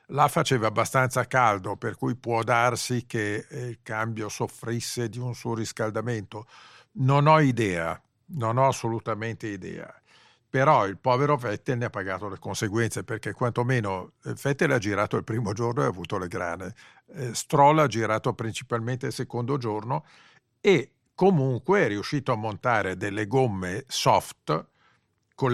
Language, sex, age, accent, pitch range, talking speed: Italian, male, 50-69, native, 105-135 Hz, 145 wpm